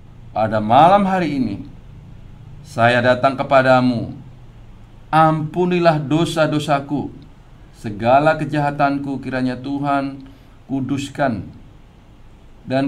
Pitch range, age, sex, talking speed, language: 120-150 Hz, 50-69, male, 70 wpm, English